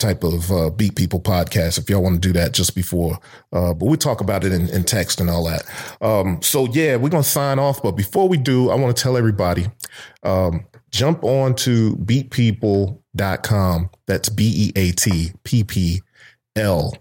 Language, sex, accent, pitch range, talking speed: English, male, American, 95-115 Hz, 175 wpm